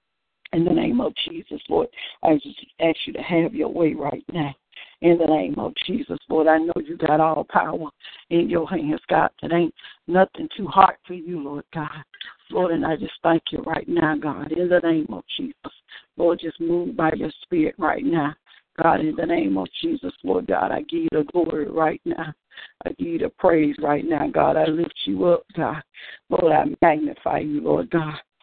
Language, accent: English, American